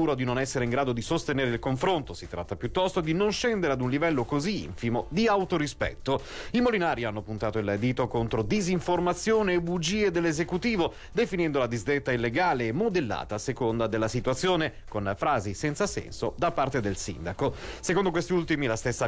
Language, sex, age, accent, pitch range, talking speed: Italian, male, 40-59, native, 115-175 Hz, 175 wpm